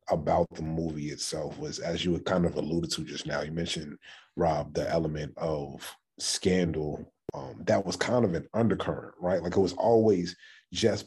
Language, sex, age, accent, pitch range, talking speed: English, male, 30-49, American, 80-95 Hz, 185 wpm